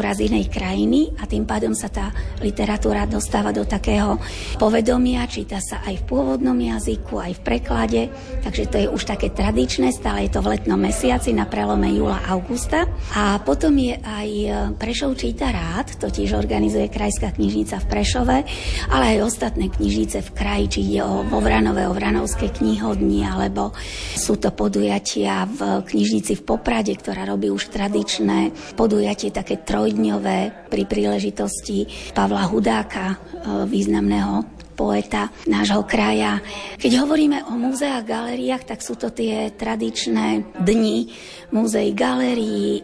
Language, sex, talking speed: Slovak, female, 135 wpm